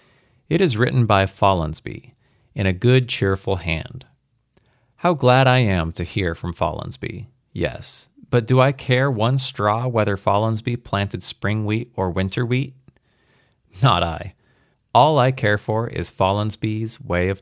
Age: 30-49